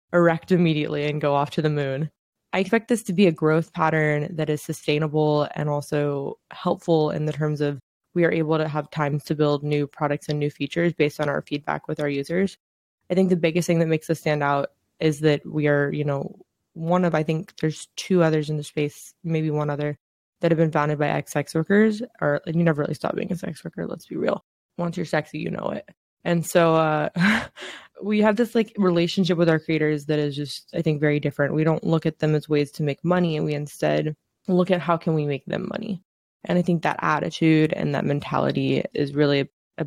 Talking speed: 230 wpm